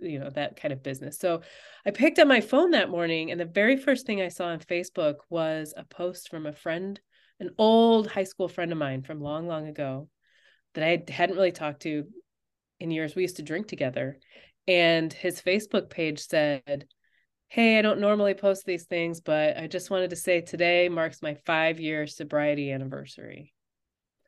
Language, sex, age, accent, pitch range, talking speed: English, female, 20-39, American, 150-190 Hz, 190 wpm